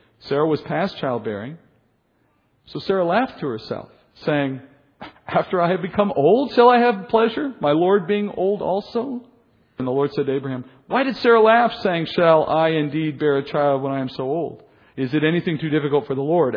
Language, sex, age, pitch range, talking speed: English, male, 50-69, 140-190 Hz, 195 wpm